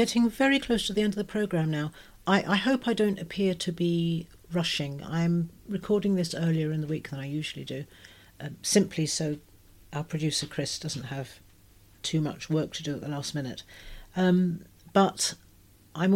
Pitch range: 140-180 Hz